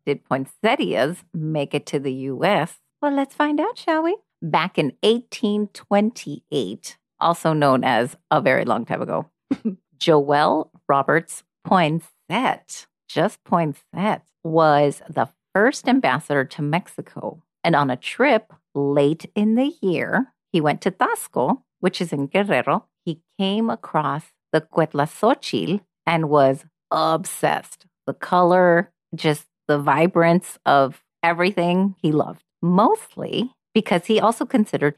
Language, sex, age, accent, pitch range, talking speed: English, female, 40-59, American, 155-205 Hz, 125 wpm